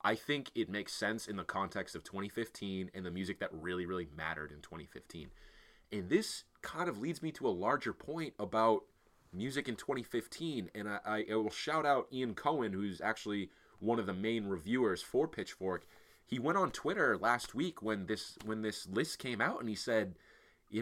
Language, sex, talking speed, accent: English, male, 190 wpm, American